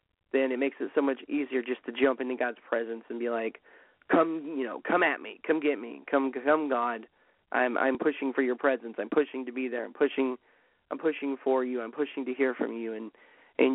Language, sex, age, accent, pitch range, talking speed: English, male, 30-49, American, 125-140 Hz, 230 wpm